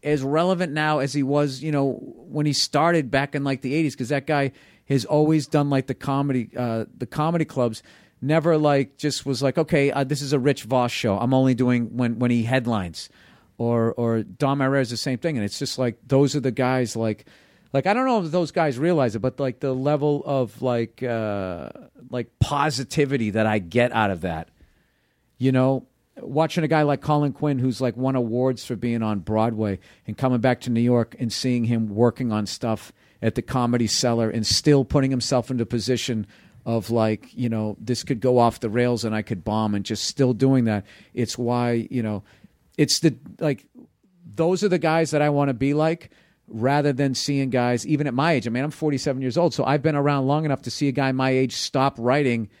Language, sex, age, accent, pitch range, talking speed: English, male, 50-69, American, 115-145 Hz, 220 wpm